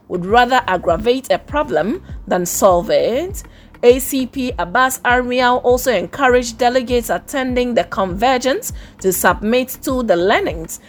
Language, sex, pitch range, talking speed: English, female, 200-260 Hz, 120 wpm